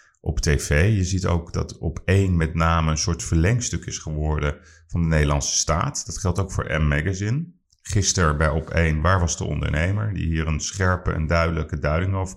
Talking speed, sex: 200 wpm, male